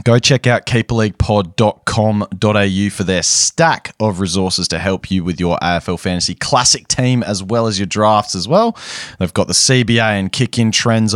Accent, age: Australian, 20-39